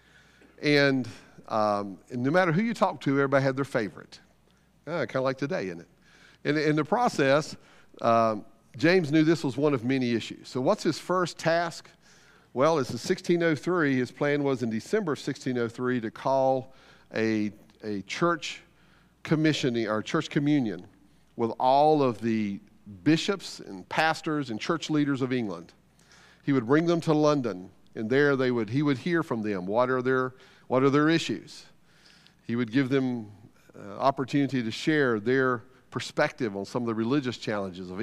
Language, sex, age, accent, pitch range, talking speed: English, male, 50-69, American, 115-155 Hz, 175 wpm